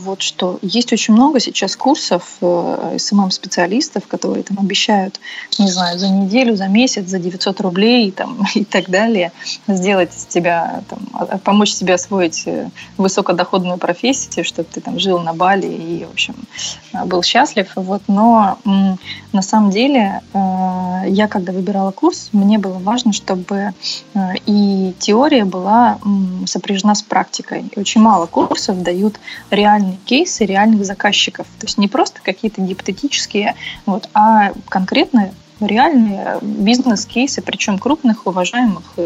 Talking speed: 130 wpm